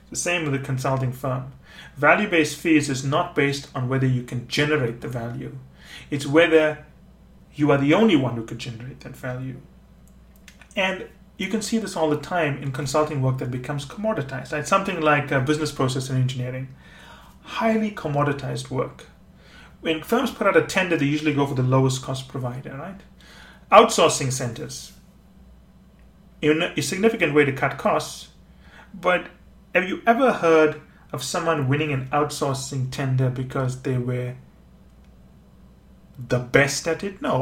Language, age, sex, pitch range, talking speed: English, 30-49, male, 130-165 Hz, 155 wpm